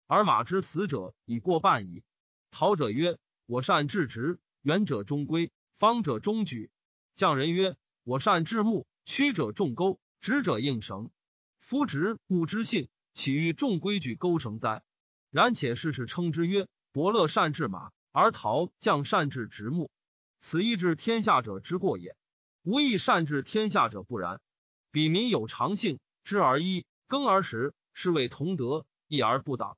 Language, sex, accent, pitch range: Chinese, male, native, 145-210 Hz